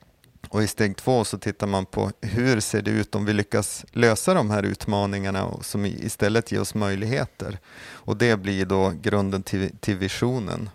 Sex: male